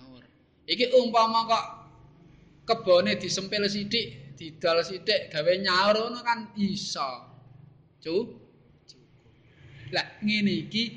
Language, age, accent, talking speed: Indonesian, 20-39, native, 90 wpm